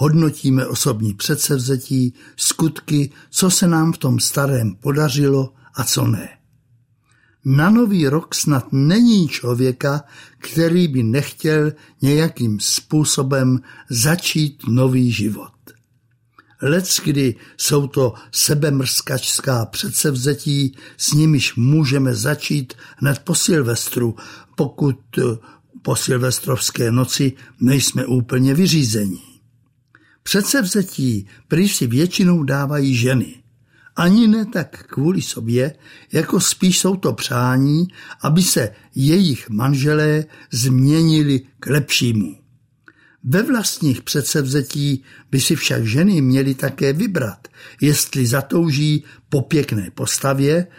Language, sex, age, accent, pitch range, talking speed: Czech, male, 60-79, native, 125-155 Hz, 100 wpm